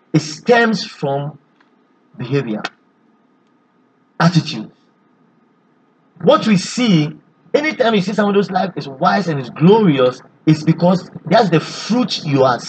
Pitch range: 150-195 Hz